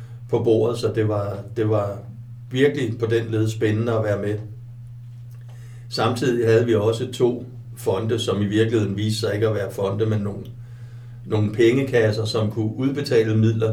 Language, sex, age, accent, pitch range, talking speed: Danish, male, 60-79, native, 110-120 Hz, 165 wpm